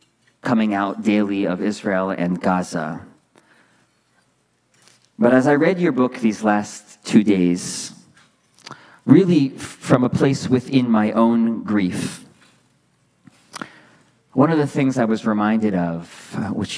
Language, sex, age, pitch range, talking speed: English, male, 40-59, 105-130 Hz, 120 wpm